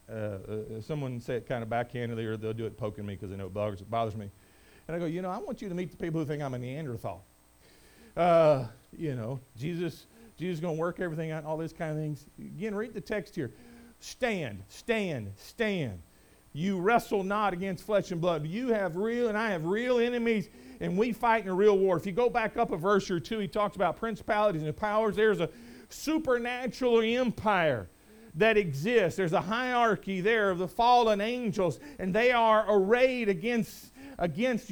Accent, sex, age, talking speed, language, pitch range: American, male, 50-69, 205 wpm, English, 170-225 Hz